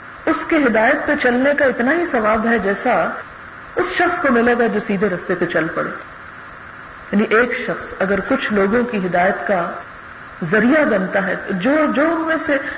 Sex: female